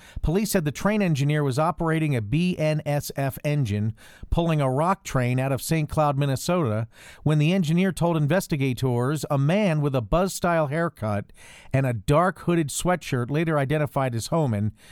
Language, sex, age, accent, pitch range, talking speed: English, male, 50-69, American, 125-165 Hz, 160 wpm